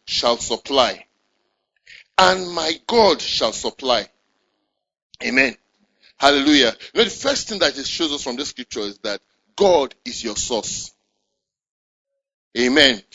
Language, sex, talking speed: English, male, 130 wpm